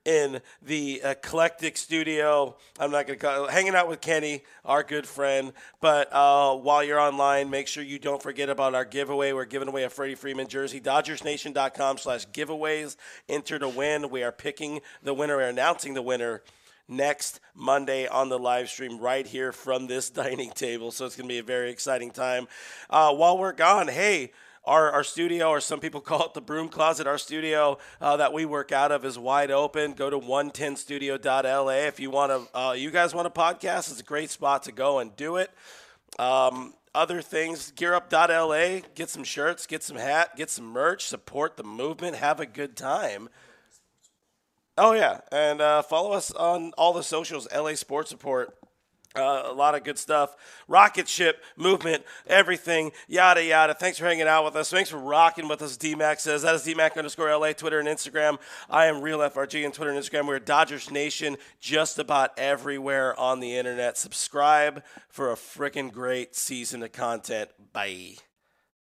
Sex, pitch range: male, 135-155 Hz